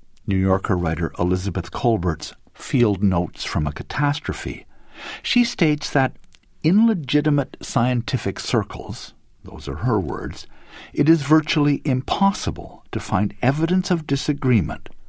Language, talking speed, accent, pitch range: English, 120 wpm, American, 90-145 Hz